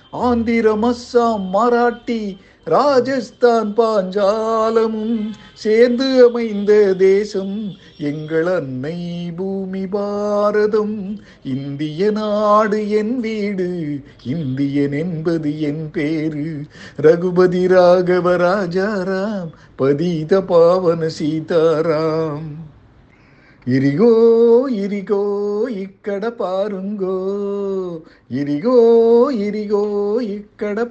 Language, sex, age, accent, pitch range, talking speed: Tamil, male, 50-69, native, 180-230 Hz, 60 wpm